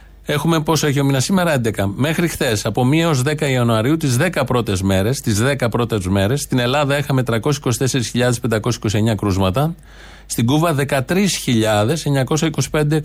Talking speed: 130 wpm